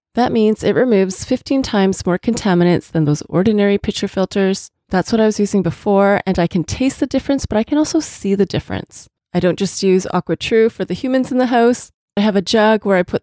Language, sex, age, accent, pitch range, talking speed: English, female, 30-49, American, 185-240 Hz, 230 wpm